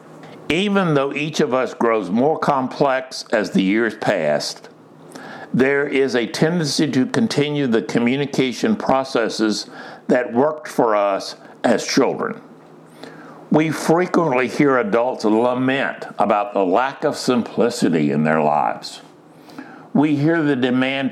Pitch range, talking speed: 120-175 Hz, 125 wpm